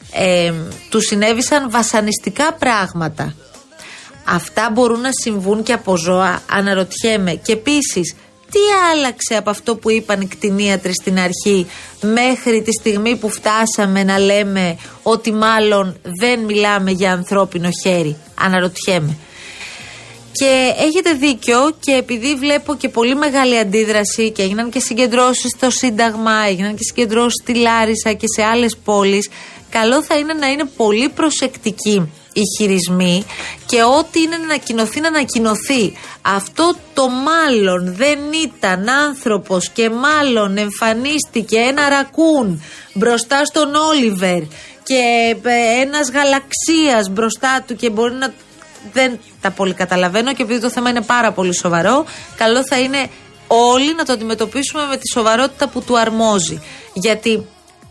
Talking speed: 135 wpm